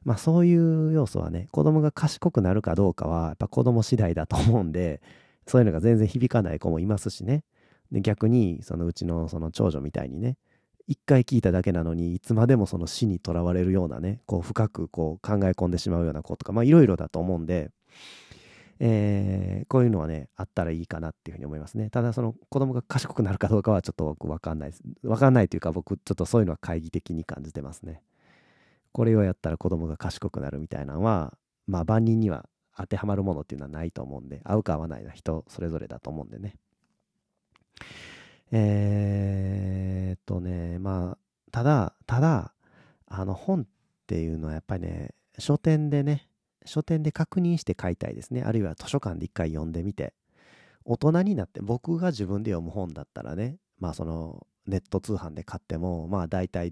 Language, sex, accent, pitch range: Japanese, male, native, 85-115 Hz